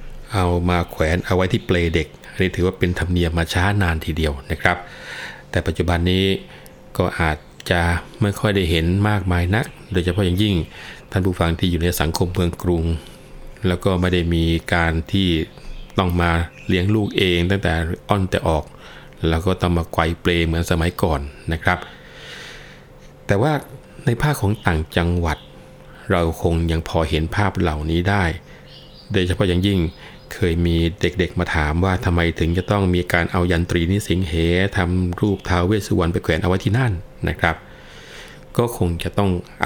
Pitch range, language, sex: 85-95 Hz, Thai, male